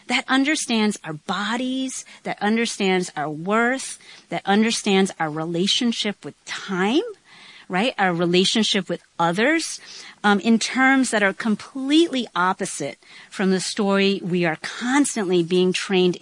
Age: 40-59